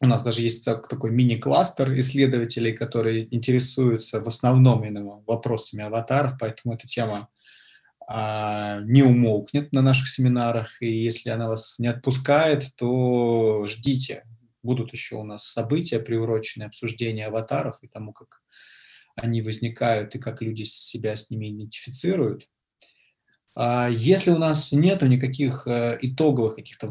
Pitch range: 110-130 Hz